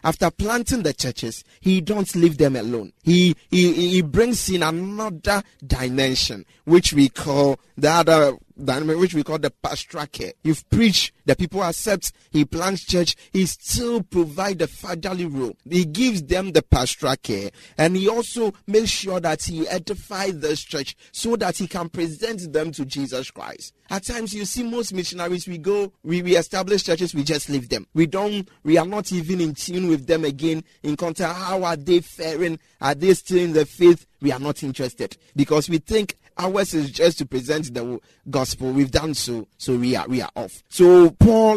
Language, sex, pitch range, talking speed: English, male, 140-185 Hz, 190 wpm